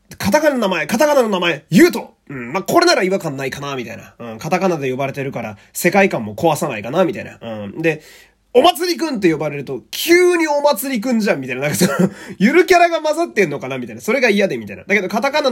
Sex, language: male, Japanese